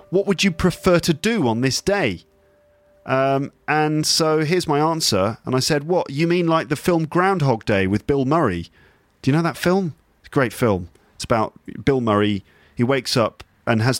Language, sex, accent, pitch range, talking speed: English, male, British, 105-145 Hz, 200 wpm